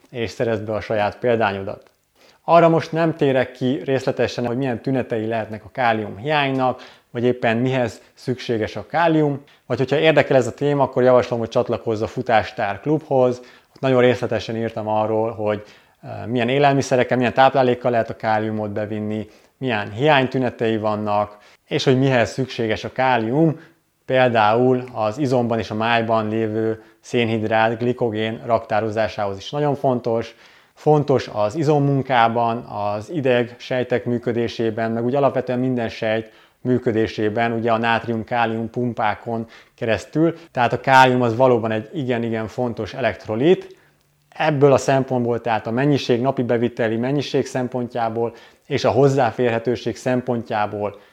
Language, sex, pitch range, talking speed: Hungarian, male, 110-130 Hz, 135 wpm